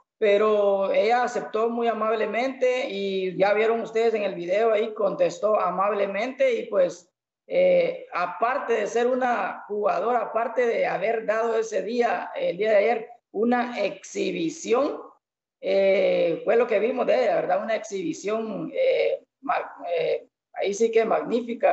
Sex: female